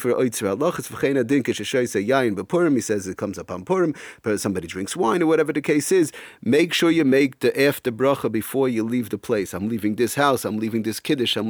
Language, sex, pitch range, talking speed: English, male, 110-145 Hz, 190 wpm